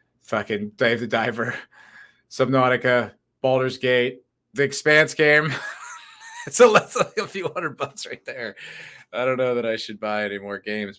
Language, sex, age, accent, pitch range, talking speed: English, male, 30-49, American, 120-155 Hz, 145 wpm